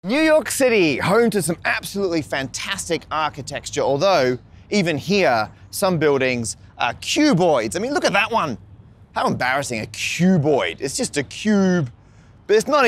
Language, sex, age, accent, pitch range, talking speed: English, male, 30-49, Australian, 110-175 Hz, 155 wpm